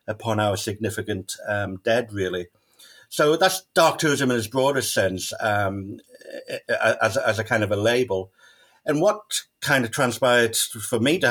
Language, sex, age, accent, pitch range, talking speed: English, male, 50-69, British, 105-125 Hz, 160 wpm